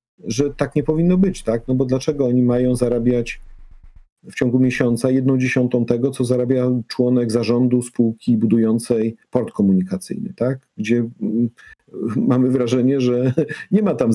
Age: 50-69